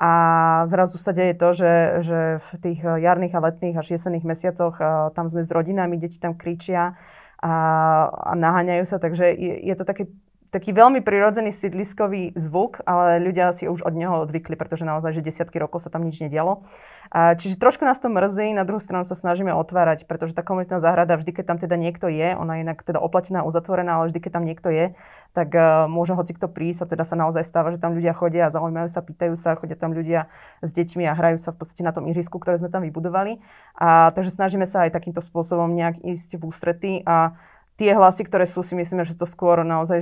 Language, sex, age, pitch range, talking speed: Slovak, female, 20-39, 165-185 Hz, 215 wpm